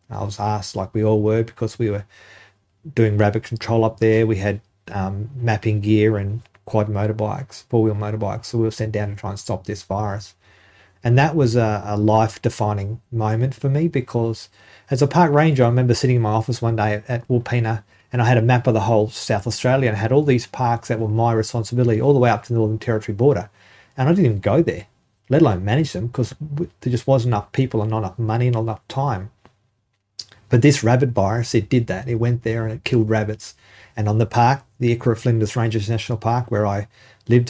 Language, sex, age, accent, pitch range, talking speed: English, male, 40-59, Australian, 105-120 Hz, 225 wpm